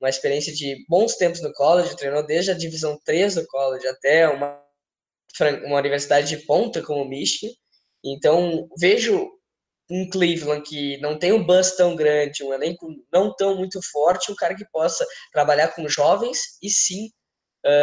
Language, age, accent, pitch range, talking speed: Portuguese, 10-29, Brazilian, 150-195 Hz, 170 wpm